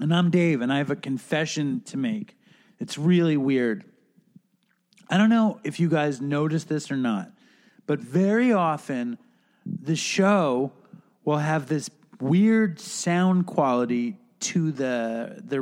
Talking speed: 140 wpm